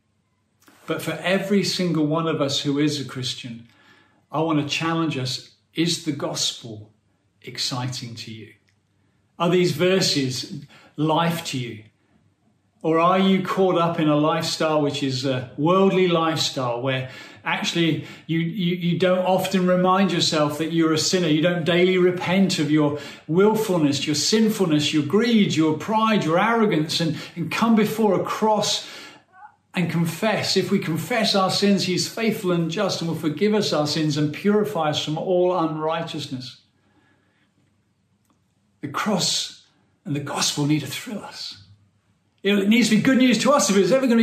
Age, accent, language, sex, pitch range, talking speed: 40-59, British, English, male, 140-190 Hz, 165 wpm